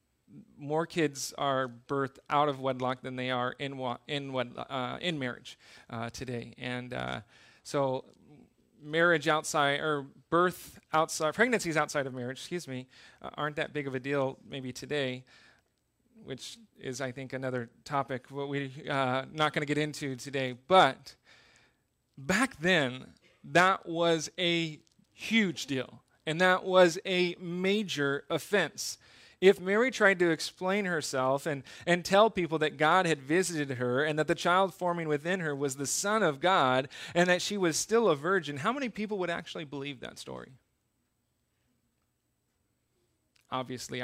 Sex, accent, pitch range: male, American, 130-170 Hz